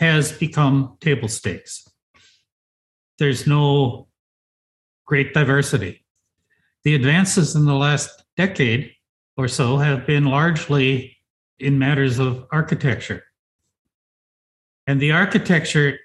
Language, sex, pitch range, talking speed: English, male, 120-150 Hz, 95 wpm